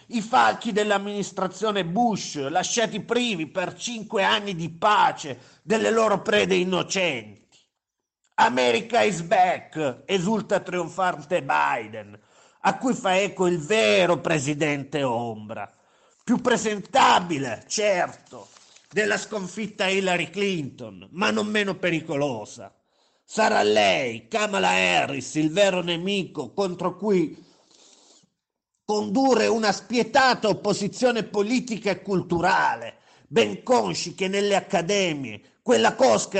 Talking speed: 105 wpm